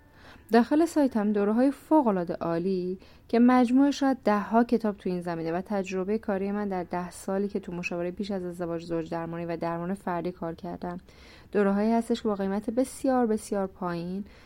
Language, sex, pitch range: Persian, female, 175-220 Hz